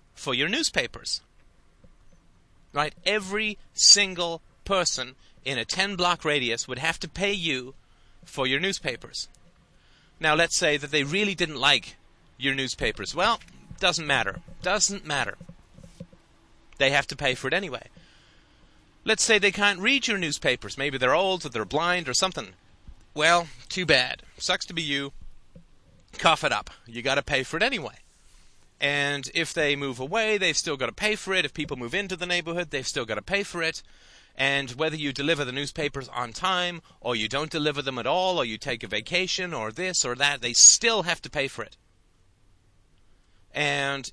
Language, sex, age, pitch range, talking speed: English, male, 30-49, 130-180 Hz, 180 wpm